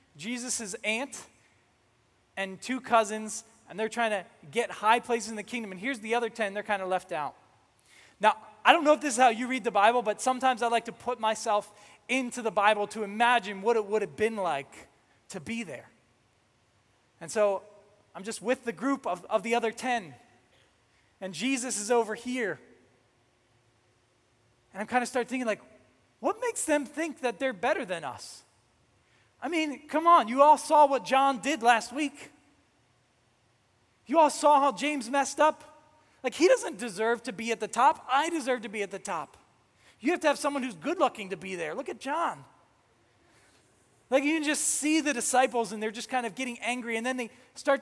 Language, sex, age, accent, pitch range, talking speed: English, male, 20-39, American, 170-260 Hz, 195 wpm